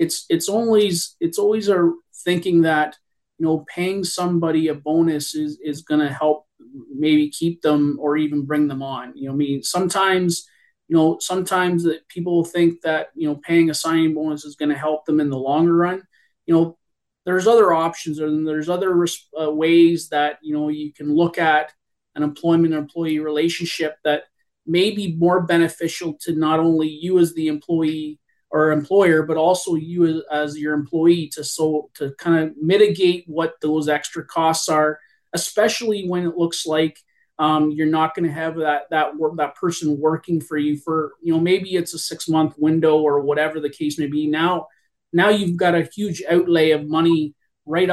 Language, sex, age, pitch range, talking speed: English, male, 30-49, 150-175 Hz, 185 wpm